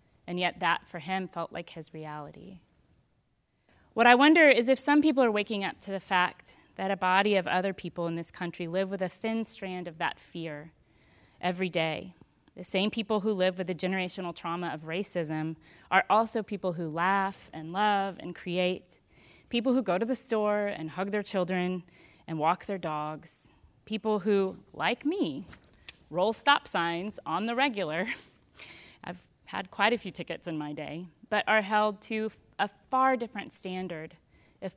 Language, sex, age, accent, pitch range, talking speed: English, female, 30-49, American, 170-215 Hz, 175 wpm